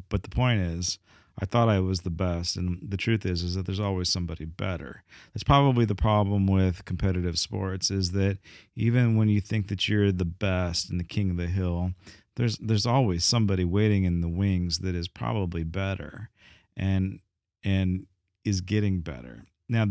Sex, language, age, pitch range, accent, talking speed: male, English, 40-59, 90-110 Hz, American, 185 wpm